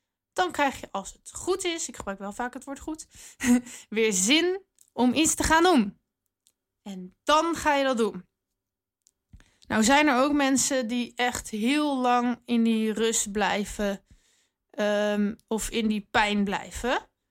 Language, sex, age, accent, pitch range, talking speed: Dutch, female, 20-39, Dutch, 205-250 Hz, 155 wpm